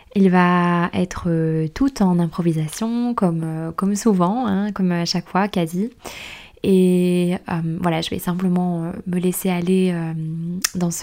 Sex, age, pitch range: female, 20-39, 170-190 Hz